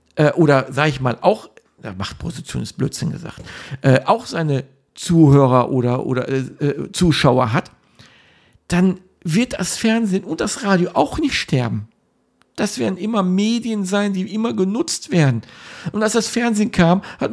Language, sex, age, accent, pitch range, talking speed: German, male, 50-69, German, 130-185 Hz, 150 wpm